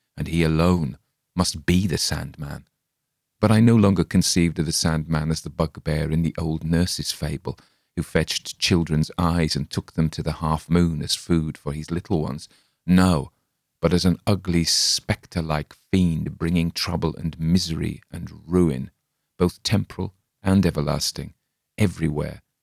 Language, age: English, 40-59